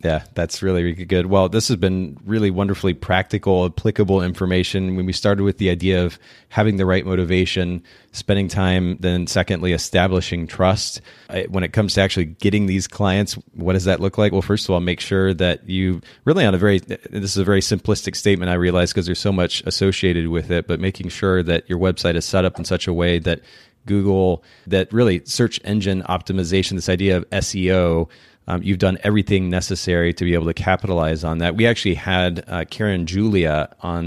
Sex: male